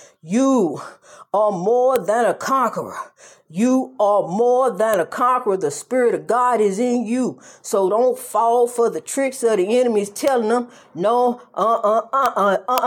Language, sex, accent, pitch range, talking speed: English, female, American, 200-245 Hz, 150 wpm